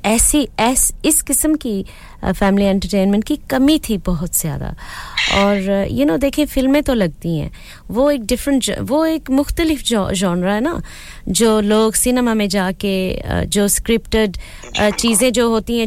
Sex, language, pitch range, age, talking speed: female, English, 195-245 Hz, 20-39, 150 wpm